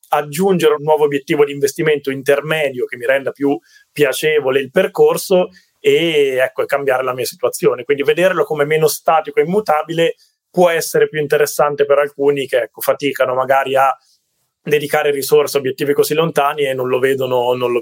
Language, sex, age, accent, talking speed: Italian, male, 20-39, native, 155 wpm